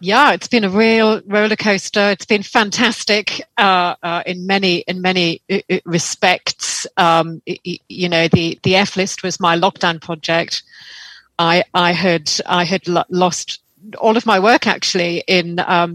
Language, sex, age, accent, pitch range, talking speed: English, female, 30-49, British, 180-215 Hz, 160 wpm